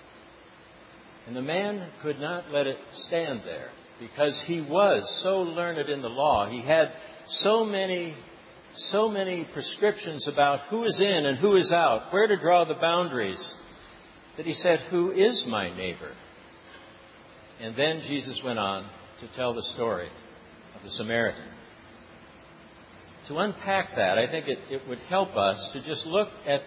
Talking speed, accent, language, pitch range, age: 155 wpm, American, English, 130-175 Hz, 60-79